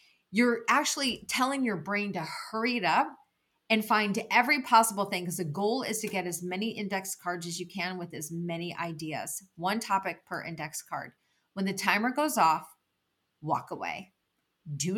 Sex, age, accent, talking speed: female, 30-49, American, 175 wpm